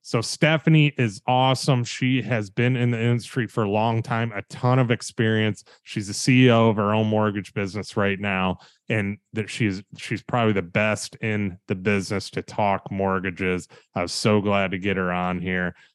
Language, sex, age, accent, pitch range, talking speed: English, male, 20-39, American, 105-125 Hz, 190 wpm